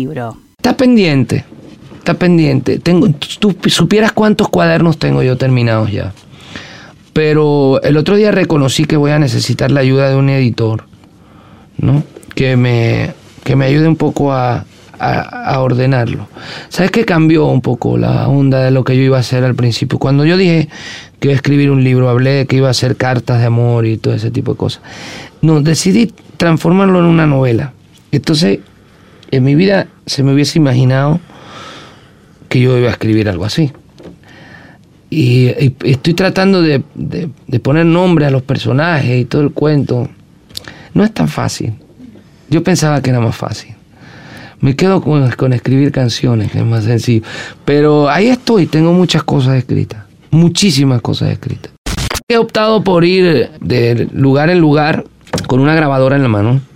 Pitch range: 125-160 Hz